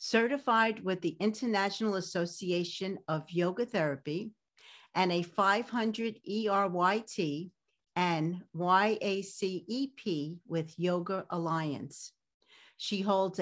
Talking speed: 85 wpm